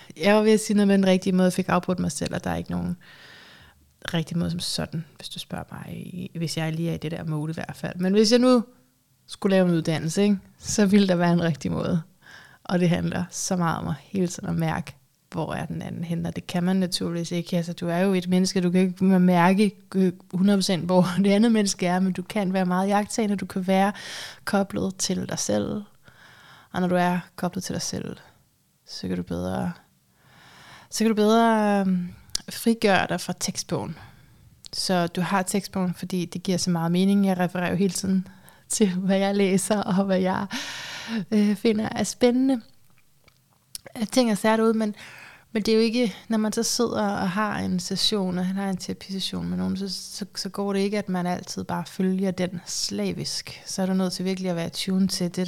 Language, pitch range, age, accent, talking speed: Danish, 175-200 Hz, 20-39, native, 215 wpm